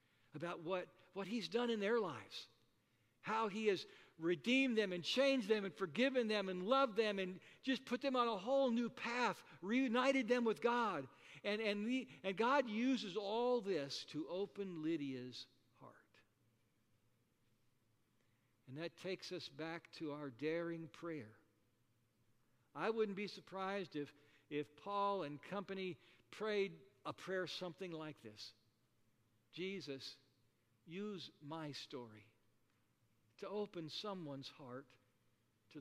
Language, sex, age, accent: English, male, 60-79, American